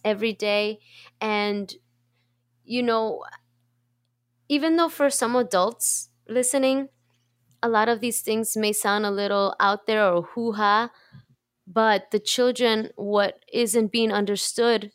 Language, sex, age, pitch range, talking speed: English, female, 20-39, 185-235 Hz, 125 wpm